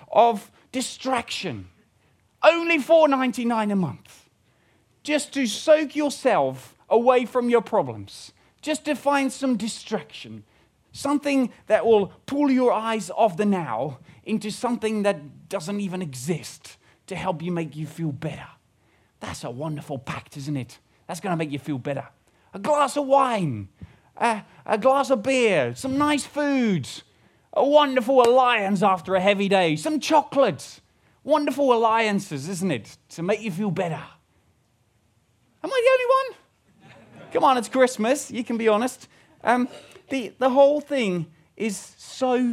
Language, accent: English, British